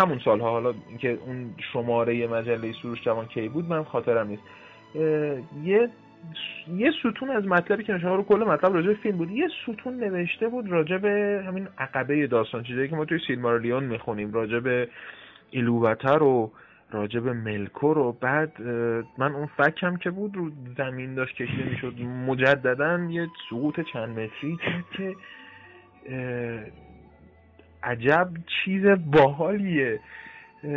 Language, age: Persian, 30-49